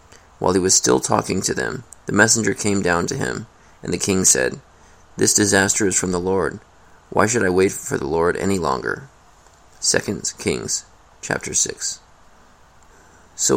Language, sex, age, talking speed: English, male, 30-49, 160 wpm